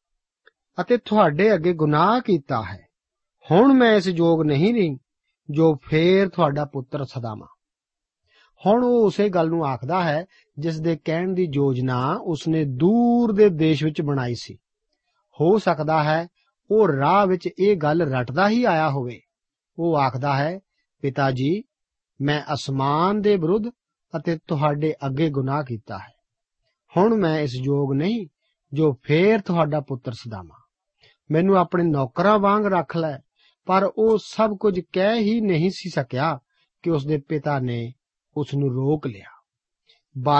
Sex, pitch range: male, 145-200 Hz